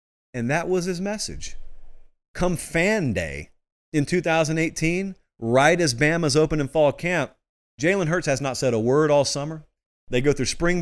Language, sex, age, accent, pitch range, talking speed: English, male, 30-49, American, 125-175 Hz, 165 wpm